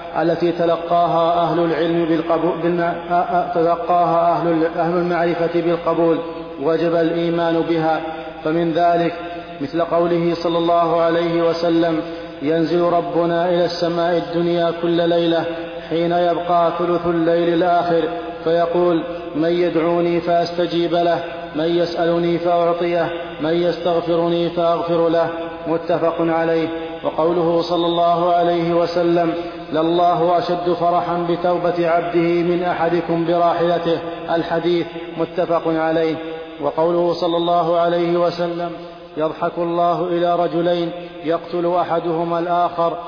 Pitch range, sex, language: 165-170 Hz, male, Arabic